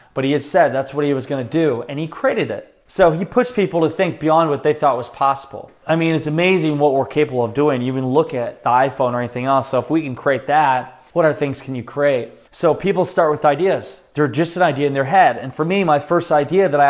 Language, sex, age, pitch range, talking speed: English, male, 20-39, 140-165 Hz, 270 wpm